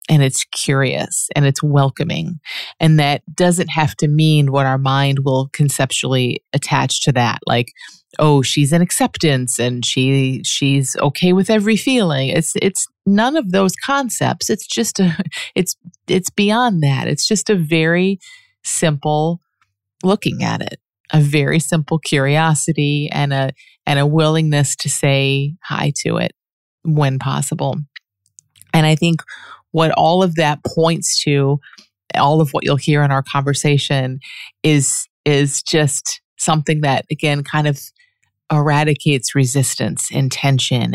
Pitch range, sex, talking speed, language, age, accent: 135-165 Hz, female, 145 wpm, English, 30-49, American